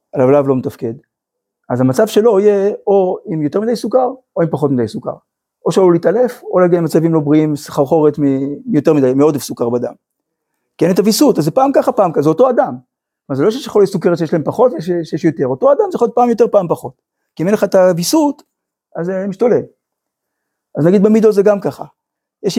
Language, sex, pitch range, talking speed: Hebrew, male, 150-210 Hz, 205 wpm